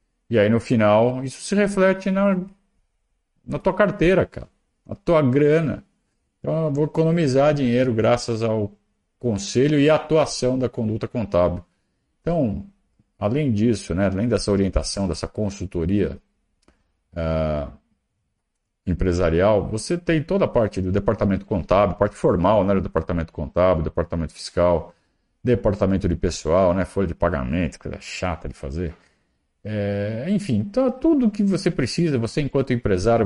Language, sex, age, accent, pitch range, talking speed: Portuguese, male, 50-69, Brazilian, 90-130 Hz, 140 wpm